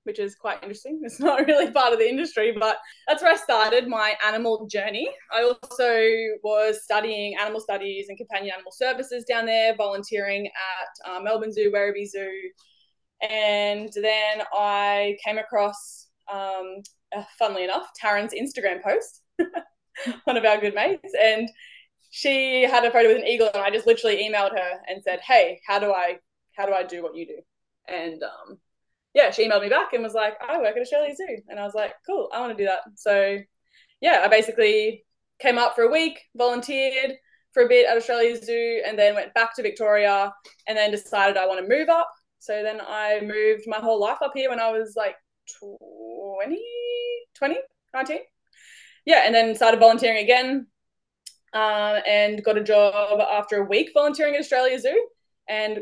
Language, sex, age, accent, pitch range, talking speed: English, female, 10-29, Australian, 205-275 Hz, 185 wpm